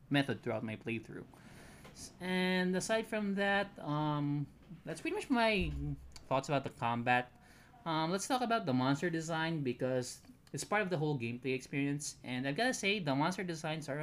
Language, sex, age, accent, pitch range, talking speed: Filipino, male, 20-39, native, 120-165 Hz, 170 wpm